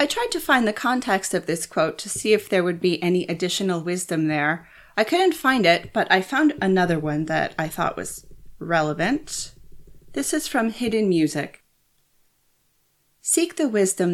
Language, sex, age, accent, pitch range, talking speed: English, female, 30-49, American, 165-215 Hz, 175 wpm